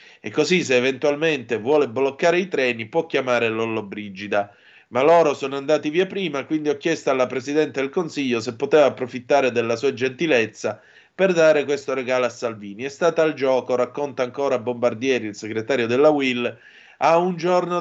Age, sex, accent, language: 30-49, male, native, Italian